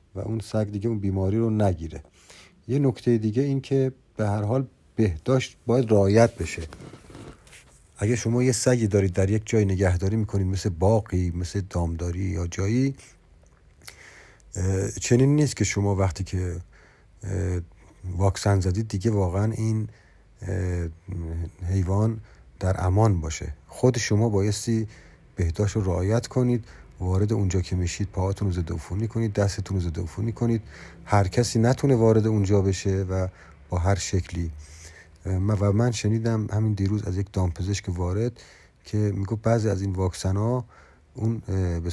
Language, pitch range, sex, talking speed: Persian, 90-110 Hz, male, 140 wpm